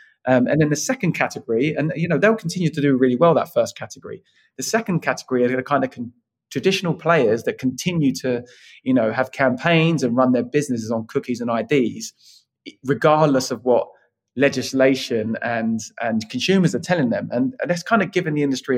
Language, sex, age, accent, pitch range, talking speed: English, male, 20-39, British, 125-160 Hz, 195 wpm